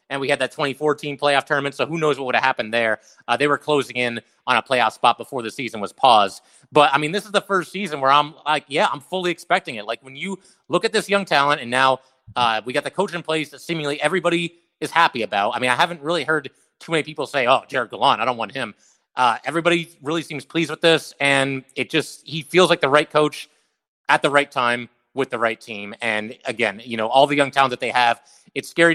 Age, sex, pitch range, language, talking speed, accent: 30-49, male, 120-155 Hz, English, 255 wpm, American